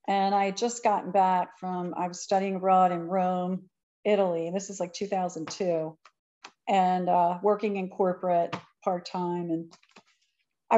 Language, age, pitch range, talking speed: English, 40-59, 180-230 Hz, 150 wpm